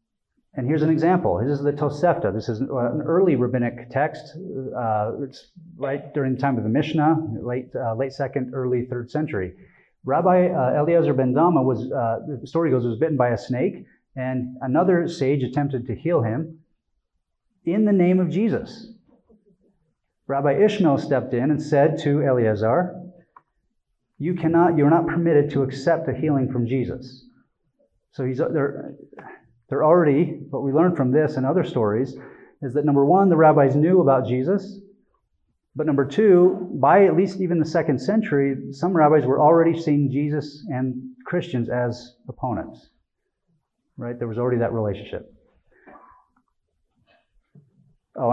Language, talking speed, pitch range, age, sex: English, 160 wpm, 125-165 Hz, 30-49, male